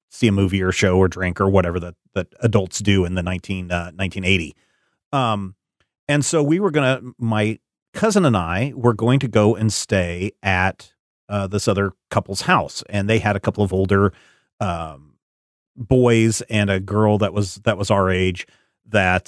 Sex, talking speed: male, 185 wpm